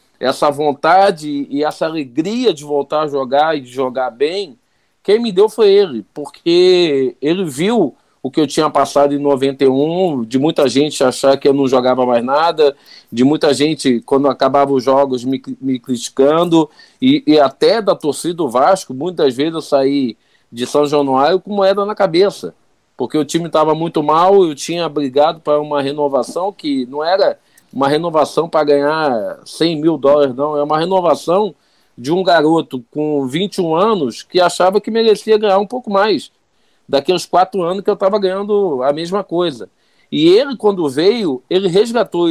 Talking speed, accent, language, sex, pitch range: 175 wpm, Brazilian, Portuguese, male, 140-190 Hz